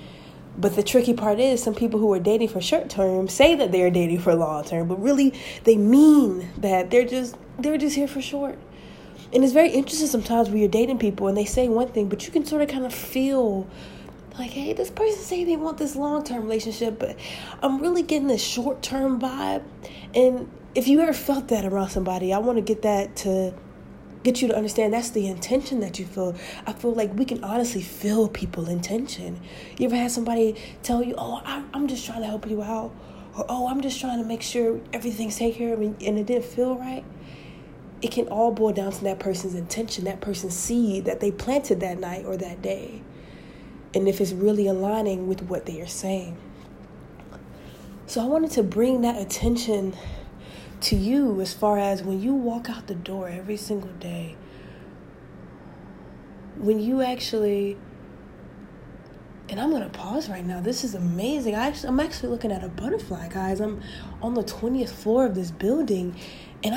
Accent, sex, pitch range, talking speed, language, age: American, female, 195-255 Hz, 195 wpm, English, 20-39